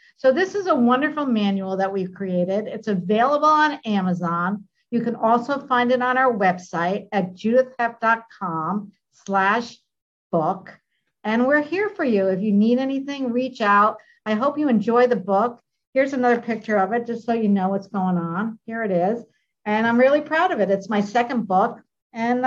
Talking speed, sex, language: 180 wpm, female, English